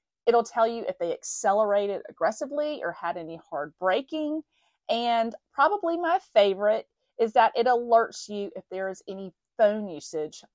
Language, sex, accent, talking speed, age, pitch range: English, female, American, 155 wpm, 30-49, 180-265 Hz